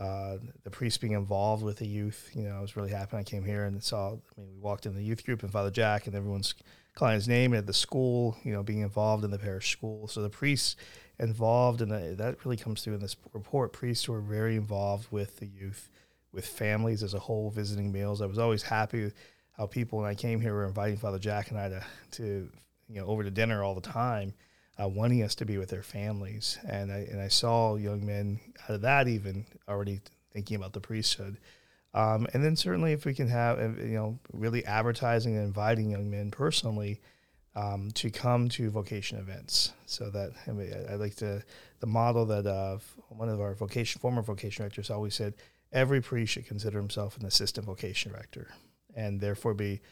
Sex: male